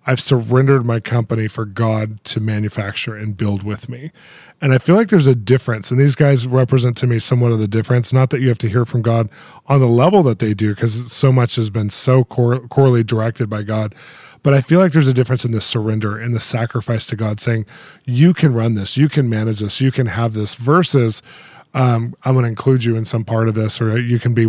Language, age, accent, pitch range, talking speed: English, 20-39, American, 115-130 Hz, 240 wpm